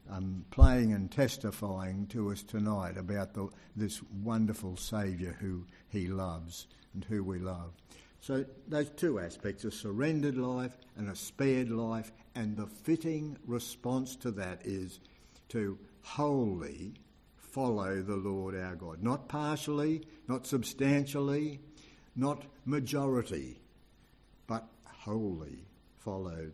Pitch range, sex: 95-125 Hz, male